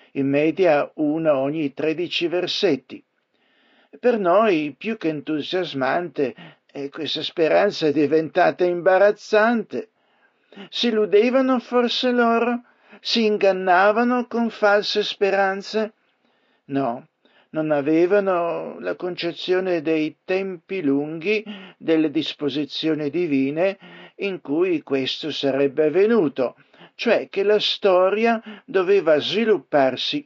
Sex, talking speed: male, 95 wpm